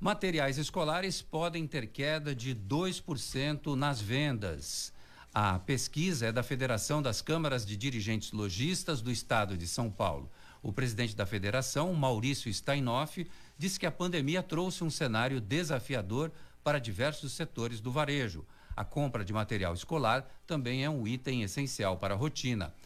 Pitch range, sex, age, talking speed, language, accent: 110-150 Hz, male, 60-79, 145 wpm, Portuguese, Brazilian